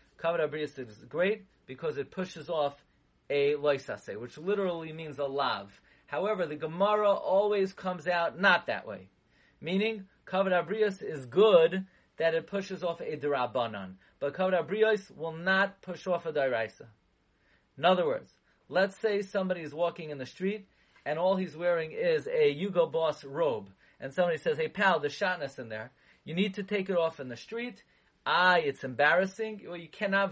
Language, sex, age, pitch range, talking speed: English, male, 30-49, 155-200 Hz, 170 wpm